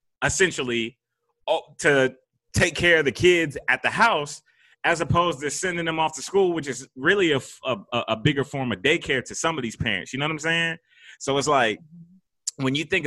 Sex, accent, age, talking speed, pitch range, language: male, American, 30-49, 195 wpm, 125-170 Hz, English